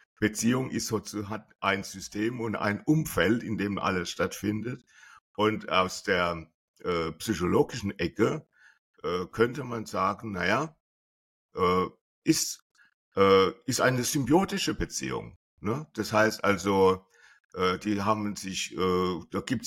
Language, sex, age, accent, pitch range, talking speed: German, male, 60-79, German, 95-120 Hz, 125 wpm